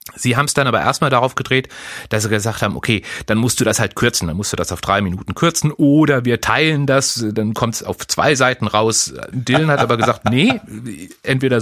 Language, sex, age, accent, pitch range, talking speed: German, male, 30-49, German, 110-150 Hz, 225 wpm